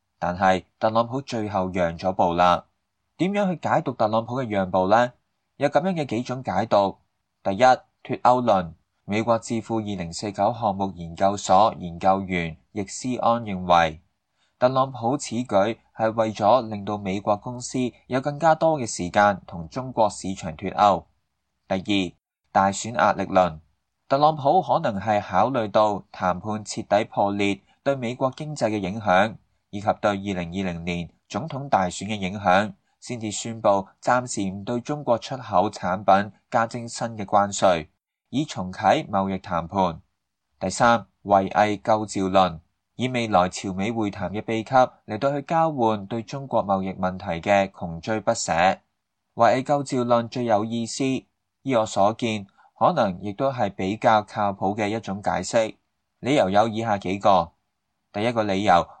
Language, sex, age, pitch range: English, male, 20-39, 95-120 Hz